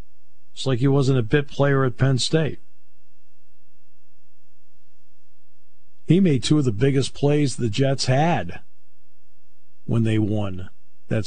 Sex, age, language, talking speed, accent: male, 50-69, English, 130 wpm, American